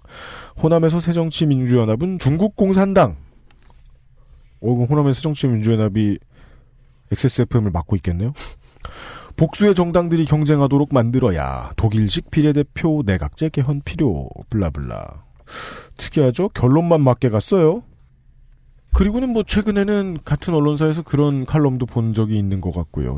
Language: Korean